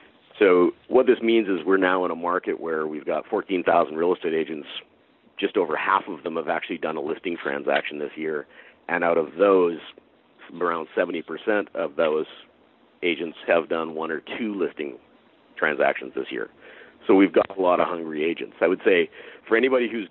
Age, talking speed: 40-59, 185 wpm